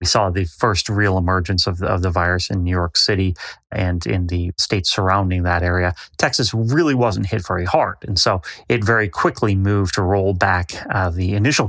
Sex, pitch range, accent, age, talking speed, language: male, 90-110 Hz, American, 30-49, 205 wpm, English